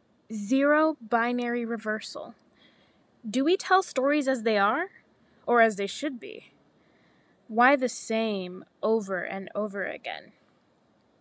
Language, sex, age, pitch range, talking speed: English, female, 10-29, 225-285 Hz, 120 wpm